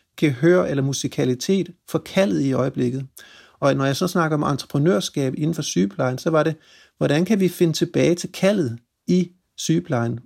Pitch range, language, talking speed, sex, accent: 135-170 Hz, Danish, 170 wpm, male, native